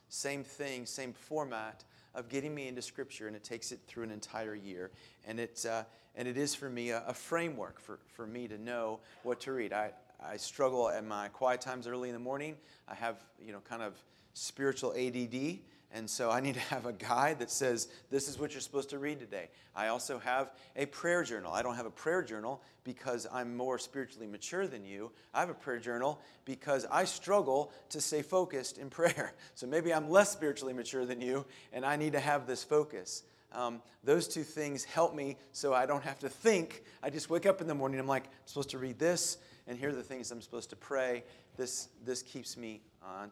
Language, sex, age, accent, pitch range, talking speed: English, male, 40-59, American, 120-150 Hz, 220 wpm